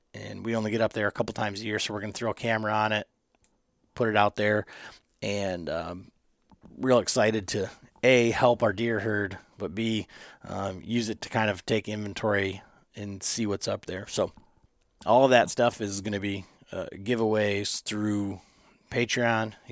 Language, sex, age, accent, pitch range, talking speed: English, male, 30-49, American, 105-120 Hz, 185 wpm